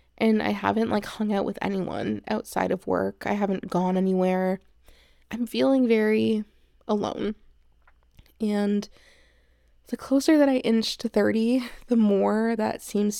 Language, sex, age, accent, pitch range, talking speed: English, female, 20-39, American, 200-250 Hz, 140 wpm